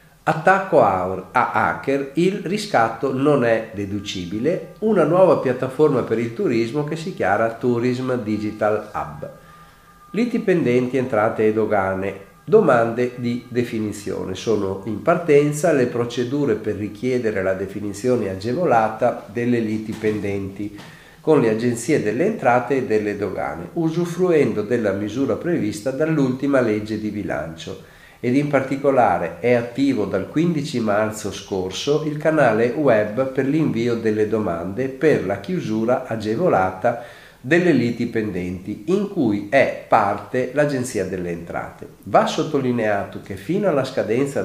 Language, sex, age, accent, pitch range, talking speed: Italian, male, 50-69, native, 105-150 Hz, 125 wpm